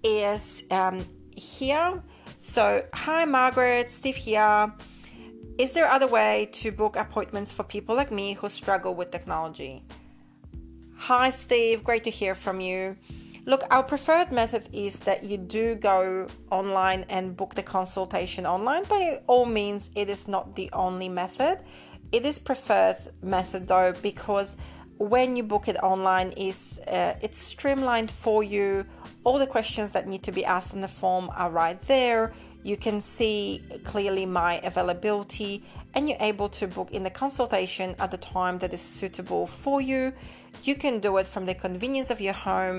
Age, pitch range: 30-49, 185-230 Hz